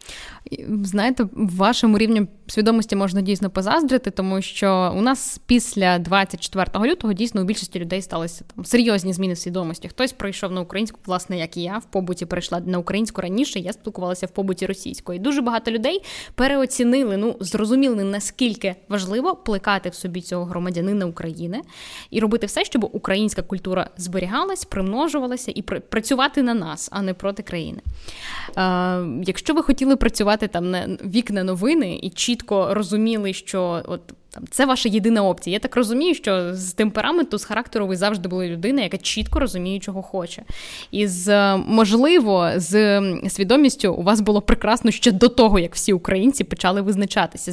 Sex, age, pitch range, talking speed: female, 10-29, 185-230 Hz, 160 wpm